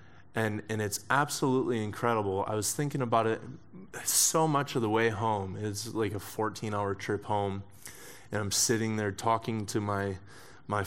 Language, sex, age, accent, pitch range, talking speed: English, male, 20-39, American, 105-120 Hz, 170 wpm